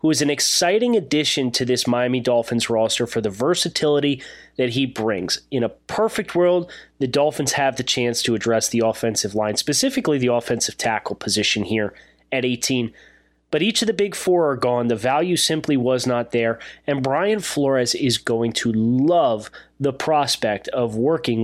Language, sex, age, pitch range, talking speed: English, male, 30-49, 115-155 Hz, 175 wpm